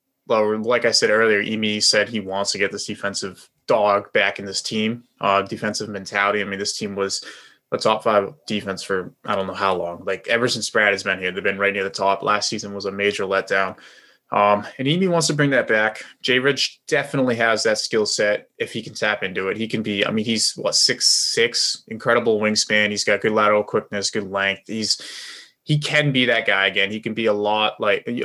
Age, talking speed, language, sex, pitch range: 20-39, 225 wpm, English, male, 100-115 Hz